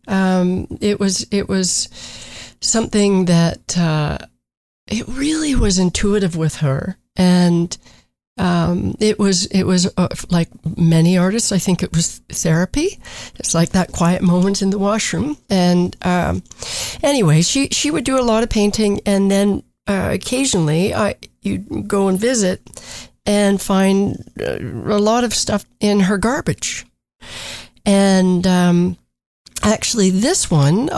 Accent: American